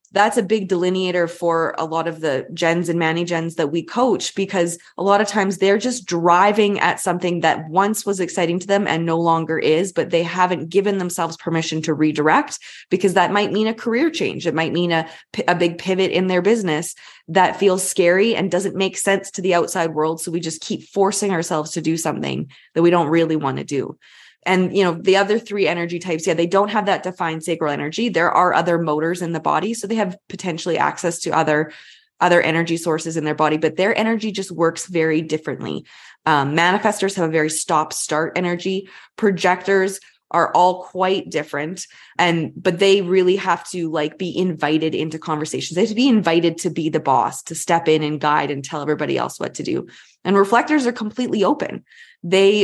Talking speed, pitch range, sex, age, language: 205 wpm, 160-190 Hz, female, 20-39, English